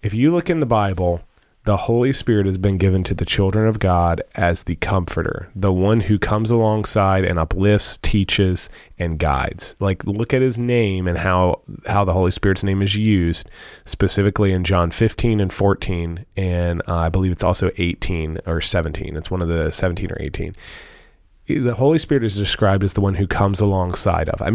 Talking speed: 195 wpm